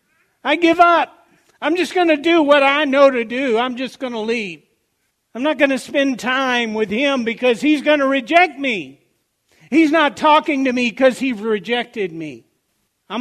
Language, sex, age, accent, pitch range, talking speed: English, male, 60-79, American, 175-275 Hz, 190 wpm